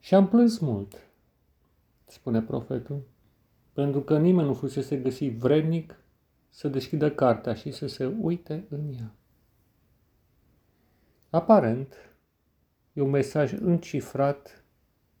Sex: male